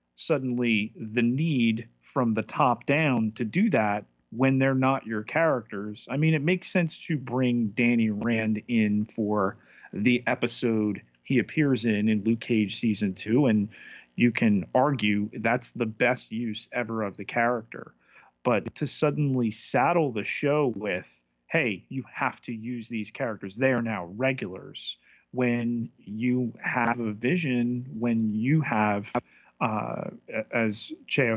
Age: 40-59